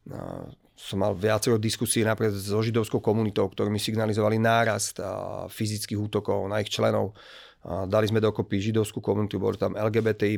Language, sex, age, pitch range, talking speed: Slovak, male, 40-59, 110-130 Hz, 145 wpm